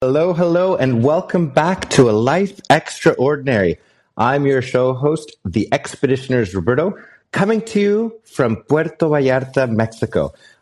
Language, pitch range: English, 110-170 Hz